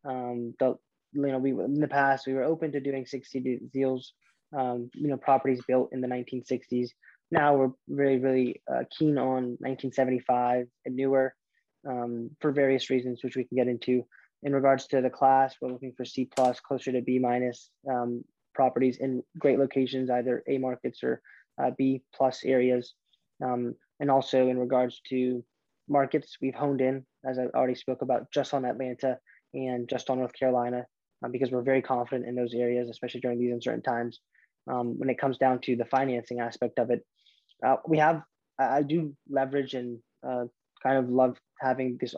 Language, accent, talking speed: English, American, 185 wpm